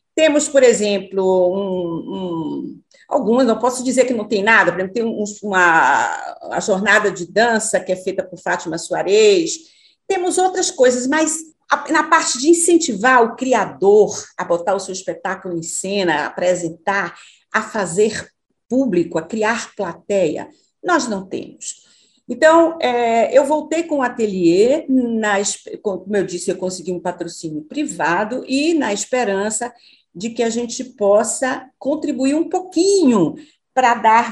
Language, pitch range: Portuguese, 180-250 Hz